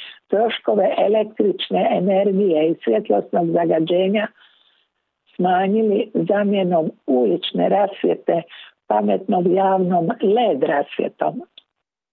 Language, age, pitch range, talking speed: Croatian, 60-79, 170-225 Hz, 70 wpm